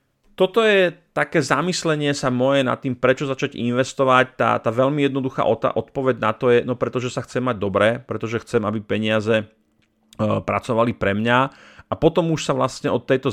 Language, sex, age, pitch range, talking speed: Slovak, male, 30-49, 105-130 Hz, 175 wpm